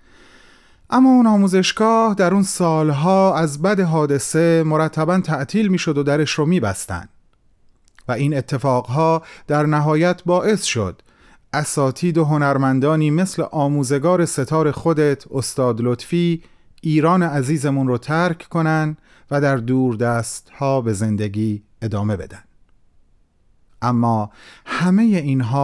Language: Persian